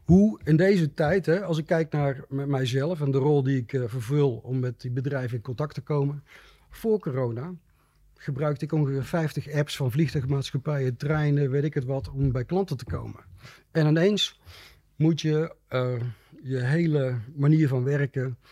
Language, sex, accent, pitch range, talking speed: Dutch, male, Dutch, 125-150 Hz, 180 wpm